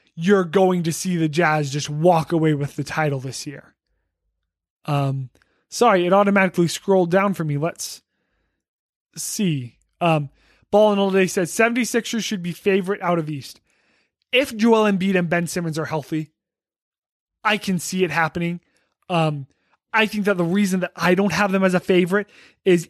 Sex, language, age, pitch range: male, English, 20-39, 160-195 Hz